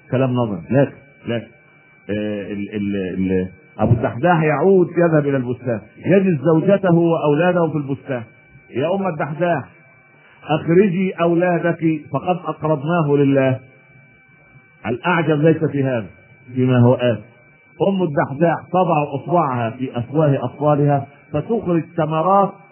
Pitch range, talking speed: 120-155 Hz, 120 wpm